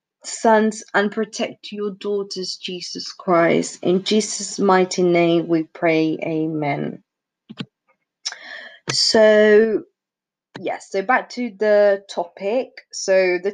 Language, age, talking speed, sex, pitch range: English, 30-49, 100 wpm, female, 195-235 Hz